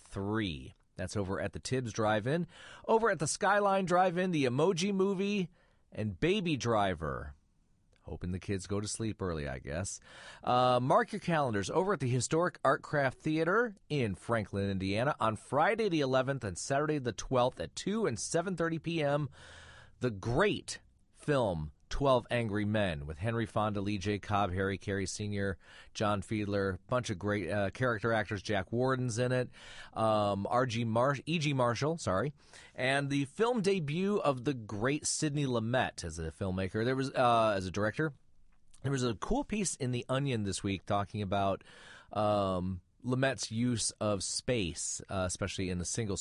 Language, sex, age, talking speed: English, male, 40-59, 165 wpm